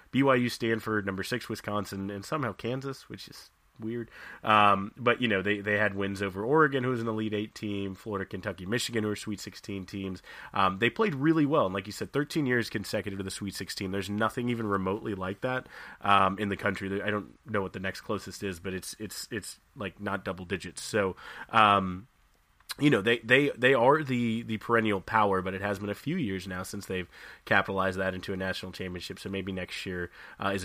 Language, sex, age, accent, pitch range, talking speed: English, male, 30-49, American, 95-110 Hz, 215 wpm